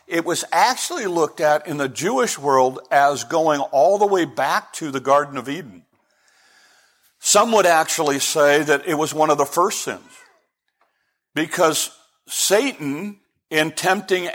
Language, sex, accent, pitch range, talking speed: English, male, American, 155-200 Hz, 150 wpm